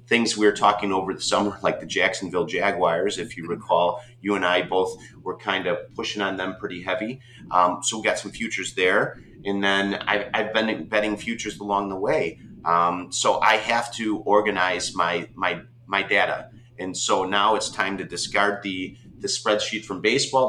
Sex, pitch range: male, 95-115 Hz